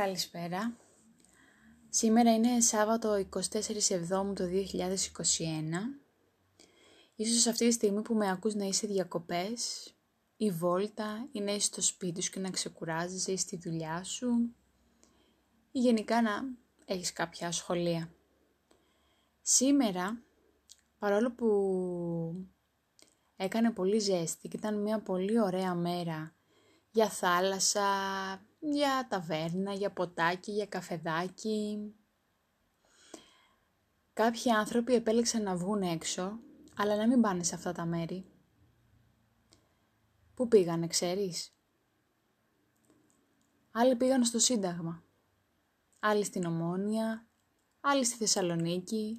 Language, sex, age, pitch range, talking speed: Greek, female, 20-39, 175-225 Hz, 100 wpm